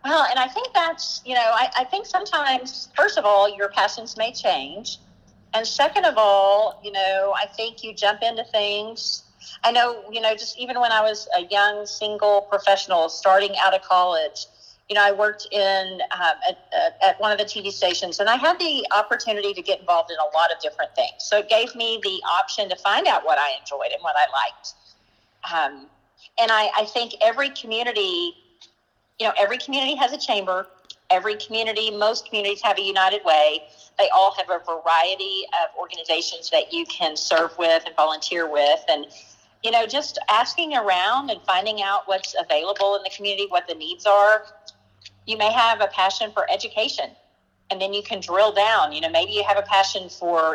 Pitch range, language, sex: 190-240 Hz, English, female